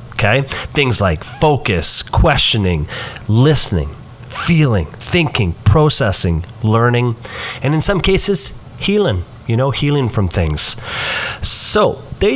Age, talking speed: 40-59, 105 wpm